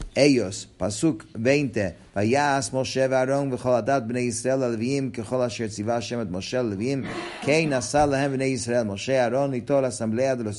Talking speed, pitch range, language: 130 wpm, 105-130 Hz, English